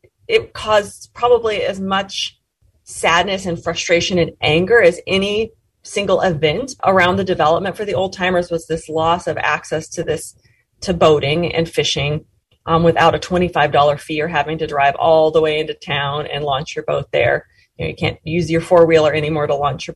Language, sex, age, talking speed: English, female, 30-49, 195 wpm